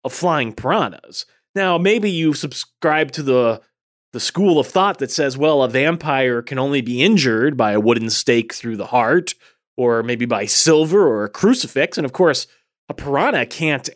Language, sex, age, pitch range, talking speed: English, male, 30-49, 135-190 Hz, 180 wpm